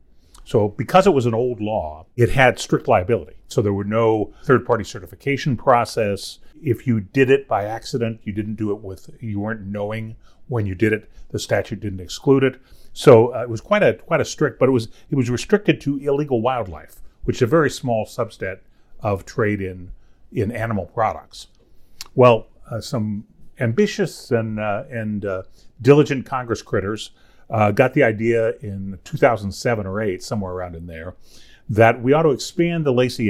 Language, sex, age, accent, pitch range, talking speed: English, male, 40-59, American, 105-135 Hz, 185 wpm